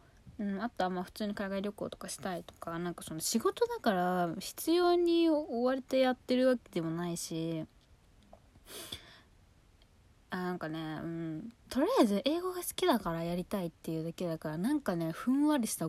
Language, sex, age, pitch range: Japanese, female, 20-39, 165-230 Hz